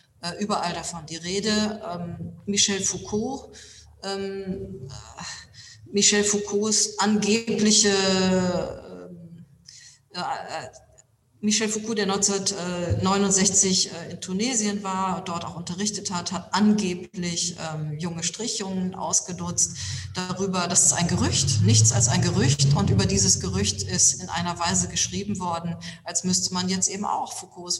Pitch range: 170-195 Hz